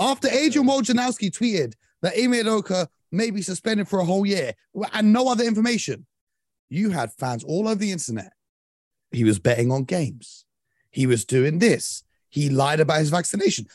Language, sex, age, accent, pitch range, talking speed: English, male, 30-49, British, 150-225 Hz, 170 wpm